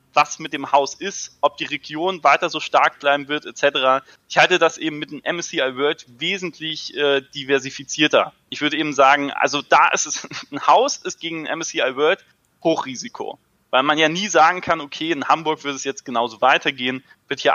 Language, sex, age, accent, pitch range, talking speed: German, male, 20-39, German, 140-175 Hz, 195 wpm